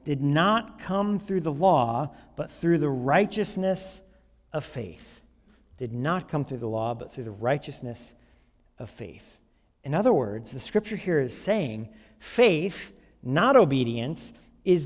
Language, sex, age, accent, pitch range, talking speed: English, male, 40-59, American, 140-205 Hz, 145 wpm